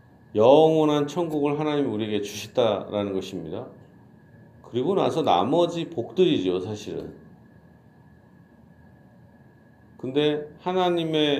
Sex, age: male, 40-59